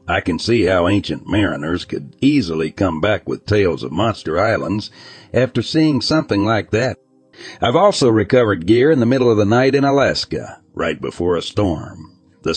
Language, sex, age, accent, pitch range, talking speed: English, male, 60-79, American, 80-125 Hz, 175 wpm